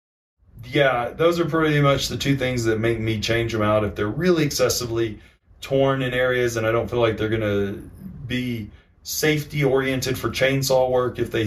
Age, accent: 30-49, American